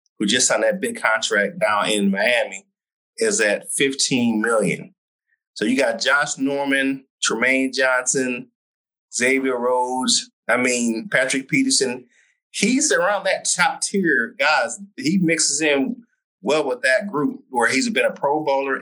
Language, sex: English, male